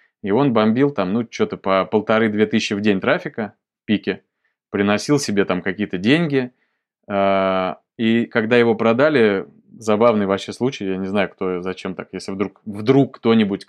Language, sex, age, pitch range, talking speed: Russian, male, 20-39, 100-125 Hz, 160 wpm